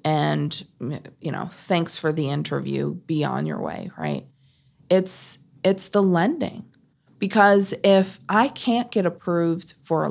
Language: English